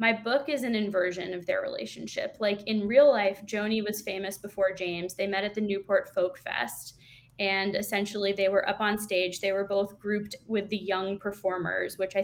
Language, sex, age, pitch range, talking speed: English, female, 10-29, 185-210 Hz, 200 wpm